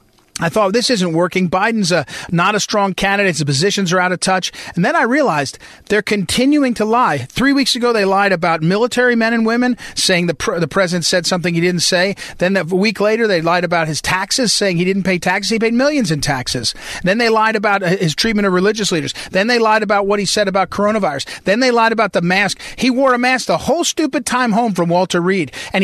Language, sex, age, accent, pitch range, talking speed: English, male, 40-59, American, 180-240 Hz, 230 wpm